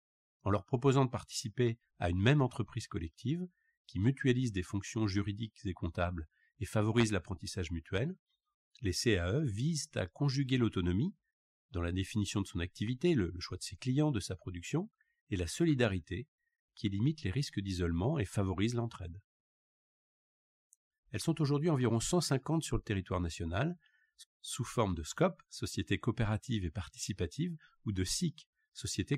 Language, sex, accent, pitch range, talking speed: French, male, French, 100-140 Hz, 150 wpm